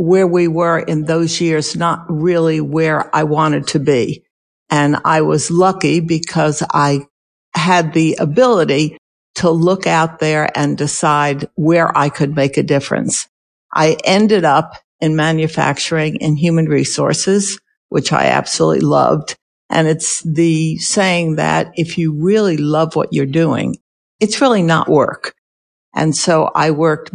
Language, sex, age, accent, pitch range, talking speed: English, female, 60-79, American, 150-180 Hz, 145 wpm